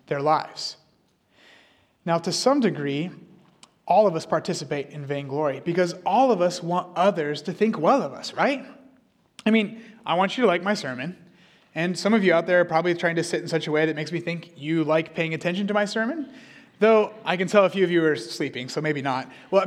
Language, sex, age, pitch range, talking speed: English, male, 30-49, 165-215 Hz, 225 wpm